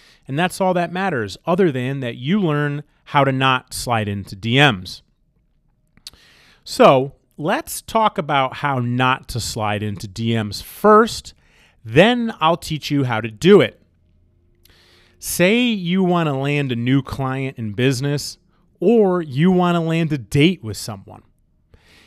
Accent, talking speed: American, 145 wpm